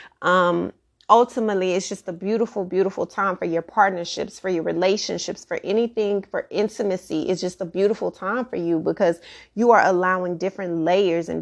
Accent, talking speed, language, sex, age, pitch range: American, 170 wpm, English, female, 30-49, 170-200 Hz